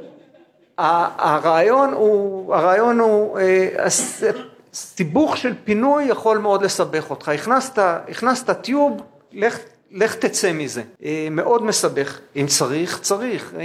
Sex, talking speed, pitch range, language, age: male, 105 wpm, 175-220 Hz, Hebrew, 50-69